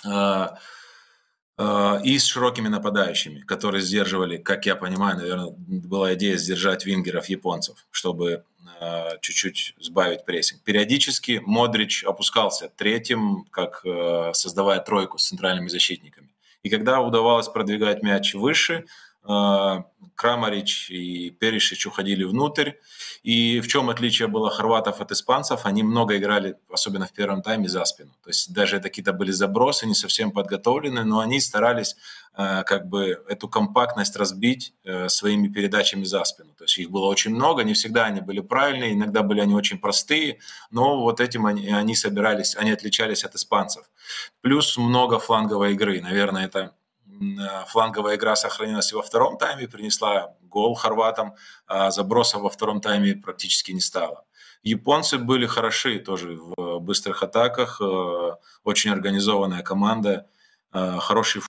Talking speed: 140 wpm